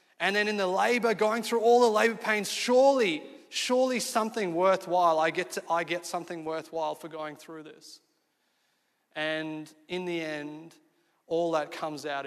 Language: English